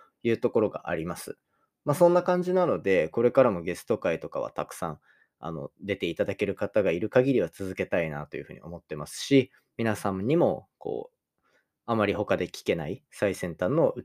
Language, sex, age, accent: Japanese, male, 20-39, native